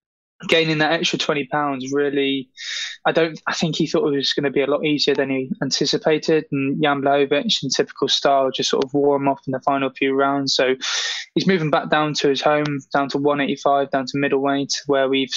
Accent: British